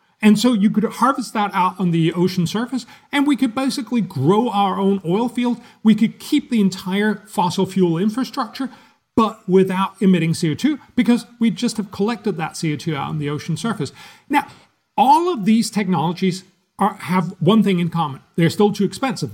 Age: 40-59